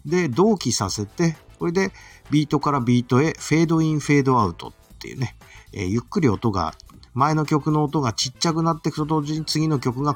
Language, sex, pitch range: Japanese, male, 95-150 Hz